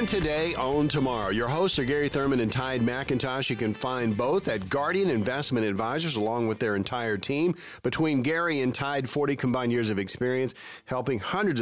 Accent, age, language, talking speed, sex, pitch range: American, 40-59, English, 180 wpm, male, 110-145 Hz